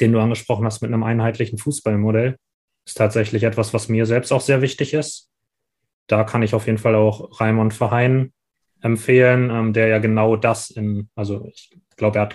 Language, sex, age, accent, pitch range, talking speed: German, male, 20-39, German, 110-125 Hz, 185 wpm